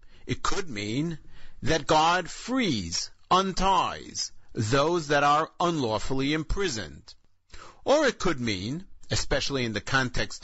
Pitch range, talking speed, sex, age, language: 115-165 Hz, 115 wpm, male, 50-69, English